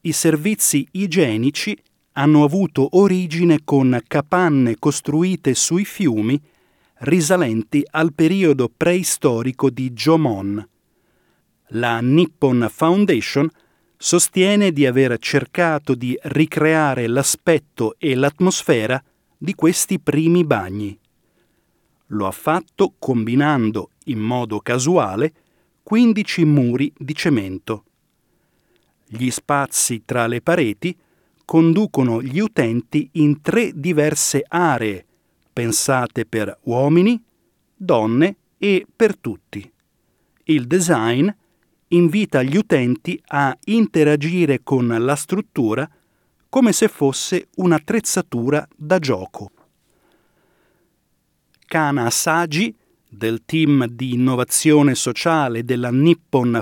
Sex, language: male, Italian